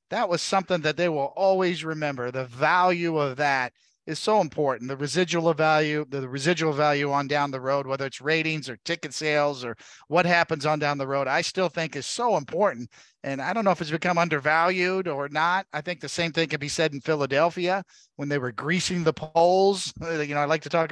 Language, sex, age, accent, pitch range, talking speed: English, male, 50-69, American, 145-175 Hz, 220 wpm